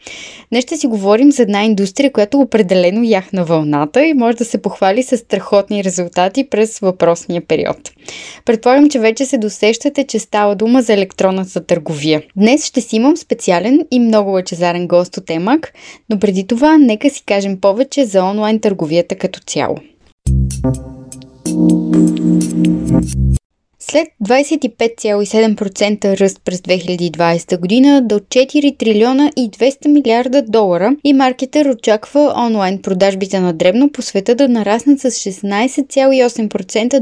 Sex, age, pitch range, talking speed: female, 20-39, 190-260 Hz, 135 wpm